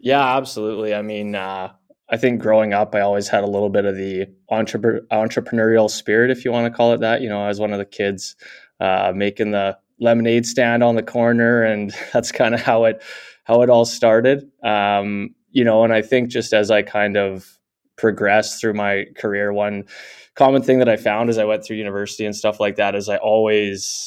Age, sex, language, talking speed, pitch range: 20-39, male, English, 210 wpm, 100-115 Hz